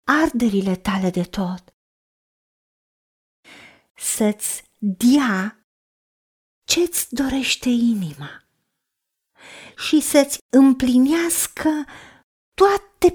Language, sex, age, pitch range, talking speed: Romanian, female, 40-59, 220-300 Hz, 60 wpm